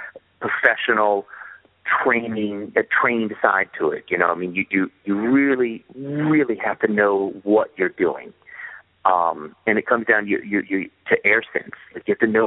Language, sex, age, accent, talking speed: English, male, 40-59, American, 185 wpm